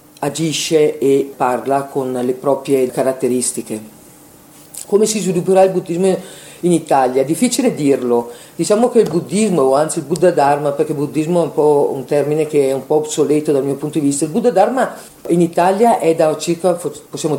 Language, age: Italian, 50-69